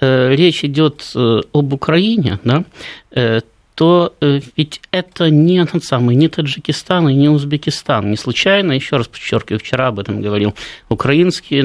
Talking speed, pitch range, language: 135 wpm, 120-160 Hz, Russian